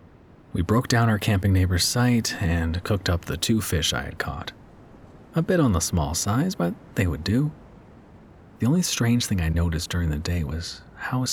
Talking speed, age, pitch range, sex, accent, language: 195 wpm, 30-49, 85-115 Hz, male, American, English